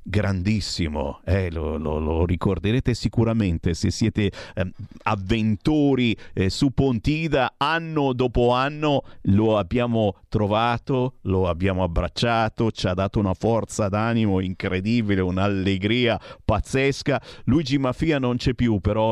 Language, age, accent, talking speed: Italian, 50-69, native, 115 wpm